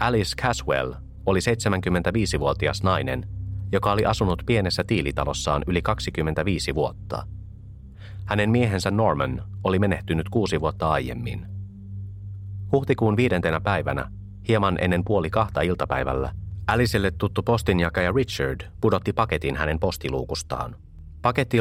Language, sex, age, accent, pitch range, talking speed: Finnish, male, 30-49, native, 75-100 Hz, 105 wpm